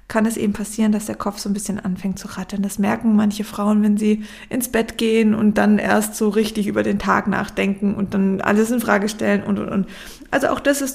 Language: German